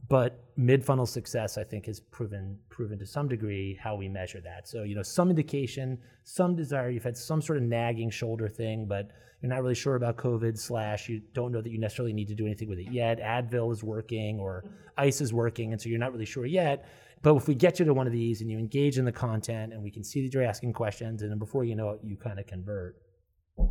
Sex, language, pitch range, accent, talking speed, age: male, English, 105-130 Hz, American, 250 wpm, 30-49